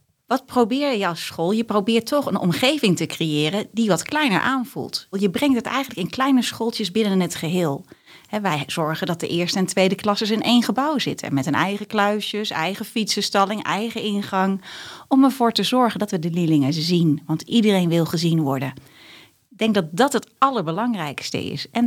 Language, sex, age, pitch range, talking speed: Dutch, female, 30-49, 175-235 Hz, 190 wpm